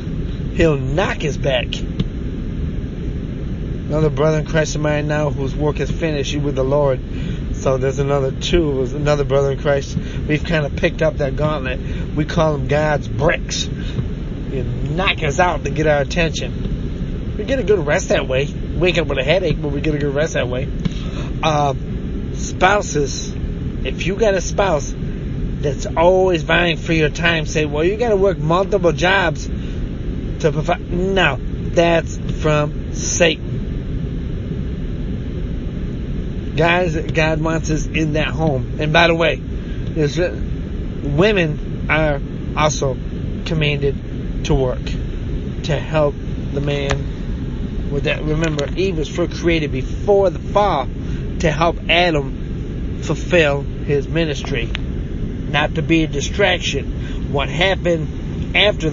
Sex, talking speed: male, 140 wpm